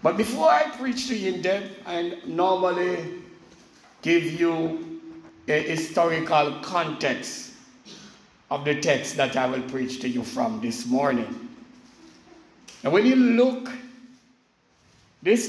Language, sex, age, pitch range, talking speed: English, male, 60-79, 145-235 Hz, 125 wpm